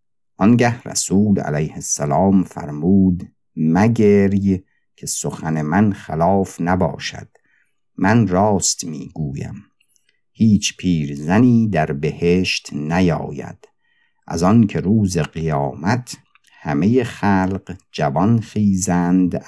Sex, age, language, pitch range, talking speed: male, 50-69, Persian, 80-105 Hz, 85 wpm